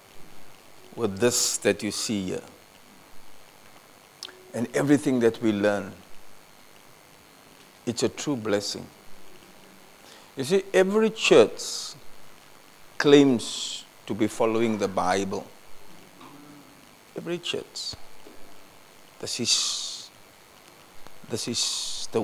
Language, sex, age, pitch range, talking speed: English, male, 50-69, 100-120 Hz, 85 wpm